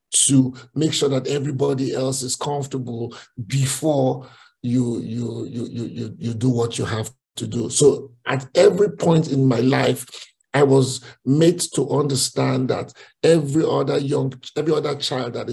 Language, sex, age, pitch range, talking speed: English, male, 50-69, 125-145 Hz, 145 wpm